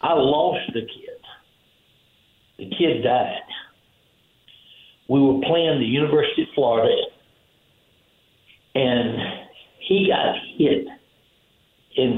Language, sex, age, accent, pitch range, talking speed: English, male, 60-79, American, 140-225 Hz, 95 wpm